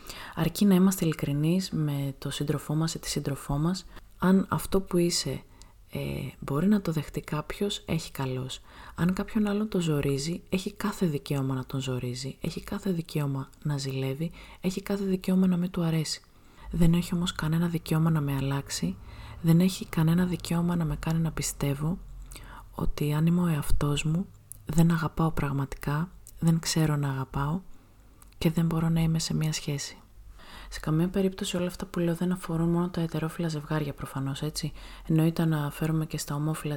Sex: female